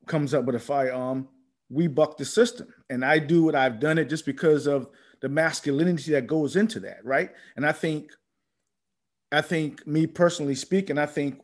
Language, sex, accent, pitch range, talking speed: English, male, American, 140-185 Hz, 190 wpm